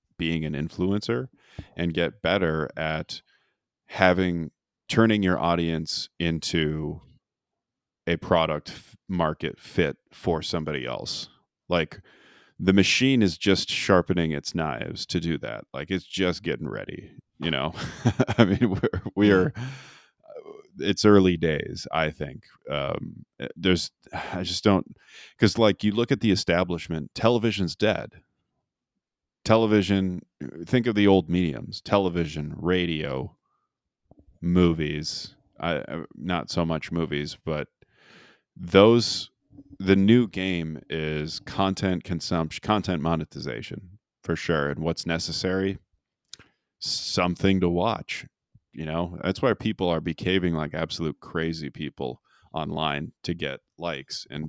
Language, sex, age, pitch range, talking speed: English, male, 30-49, 80-100 Hz, 120 wpm